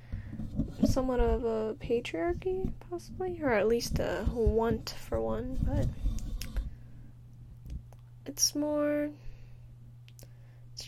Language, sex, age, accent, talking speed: English, female, 10-29, American, 90 wpm